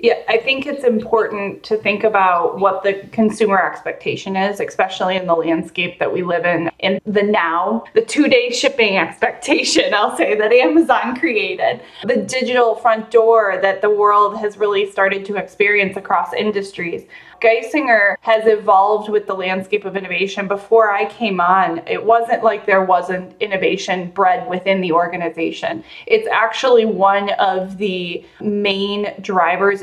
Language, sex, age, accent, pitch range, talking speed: English, female, 20-39, American, 195-230 Hz, 155 wpm